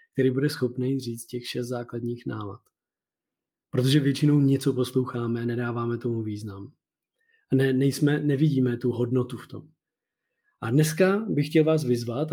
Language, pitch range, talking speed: Czech, 125-155 Hz, 125 wpm